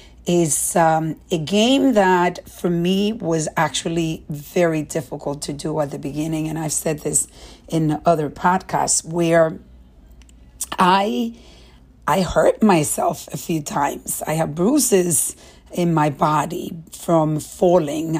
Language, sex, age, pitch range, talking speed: English, female, 40-59, 155-195 Hz, 130 wpm